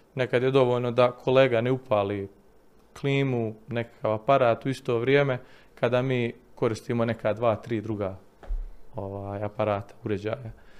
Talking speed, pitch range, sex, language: 130 wpm, 110-130 Hz, male, Croatian